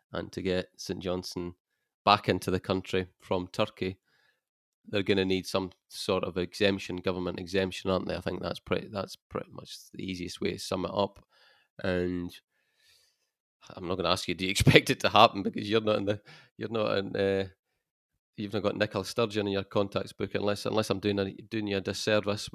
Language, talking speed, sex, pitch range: English, 200 wpm, male, 95-110 Hz